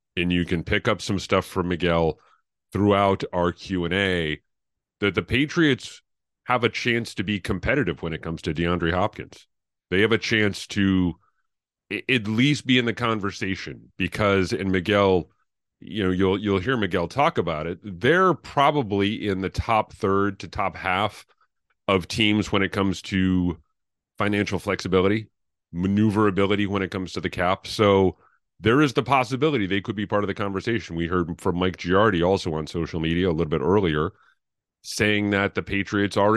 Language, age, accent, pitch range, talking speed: English, 40-59, American, 85-105 Hz, 175 wpm